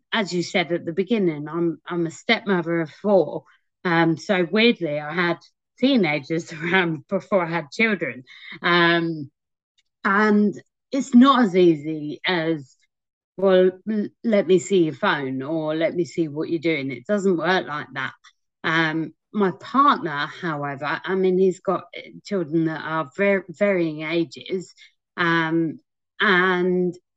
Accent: British